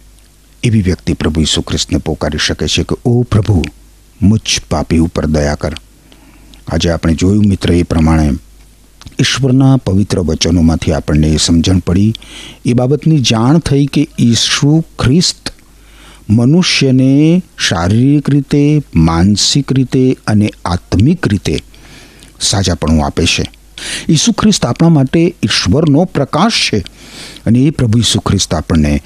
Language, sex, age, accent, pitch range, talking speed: Gujarati, male, 60-79, native, 80-125 Hz, 85 wpm